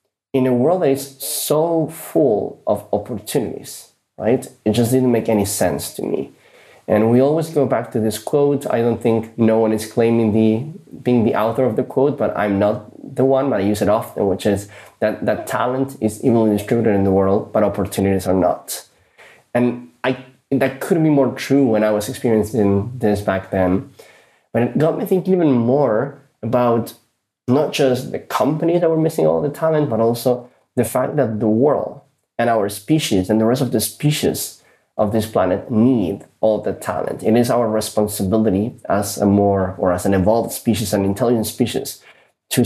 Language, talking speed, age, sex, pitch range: English, 190 wpm, 20-39, male, 105-135 Hz